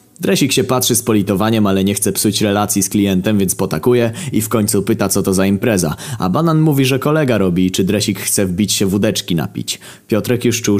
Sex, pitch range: male, 95-125 Hz